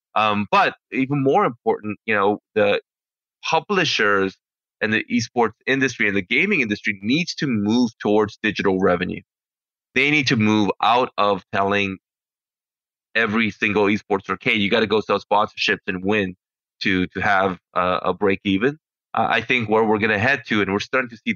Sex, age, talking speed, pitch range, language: male, 20-39, 175 wpm, 100-125 Hz, English